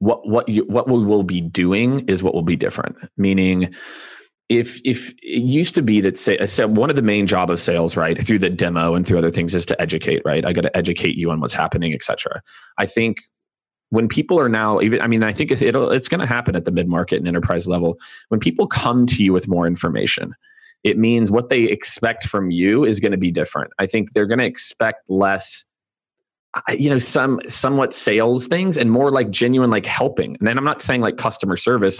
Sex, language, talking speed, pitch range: male, English, 225 wpm, 95-120 Hz